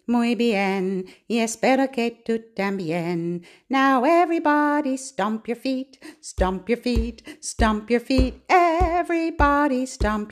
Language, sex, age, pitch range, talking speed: English, female, 50-69, 210-290 Hz, 115 wpm